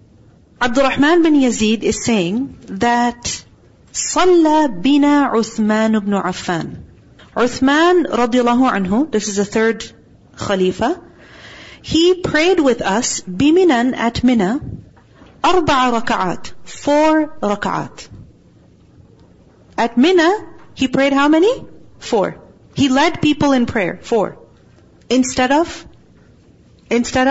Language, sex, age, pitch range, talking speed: English, female, 40-59, 220-295 Hz, 105 wpm